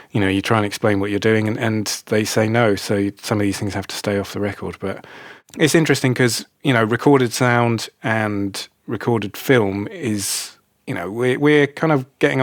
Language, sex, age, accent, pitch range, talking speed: English, male, 30-49, British, 100-120 Hz, 210 wpm